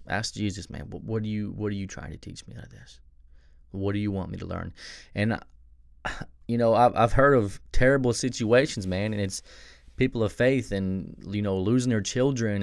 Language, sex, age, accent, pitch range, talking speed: English, male, 20-39, American, 70-105 Hz, 210 wpm